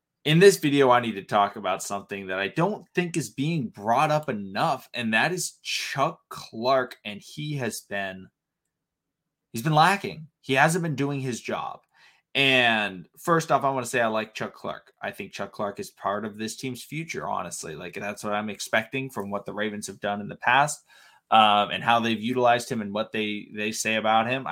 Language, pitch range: English, 105-150 Hz